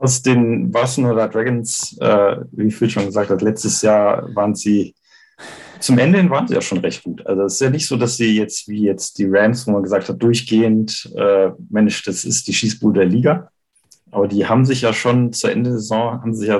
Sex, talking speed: male, 225 wpm